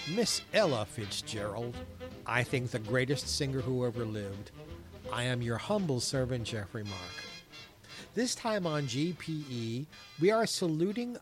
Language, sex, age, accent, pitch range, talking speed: English, male, 50-69, American, 115-155 Hz, 135 wpm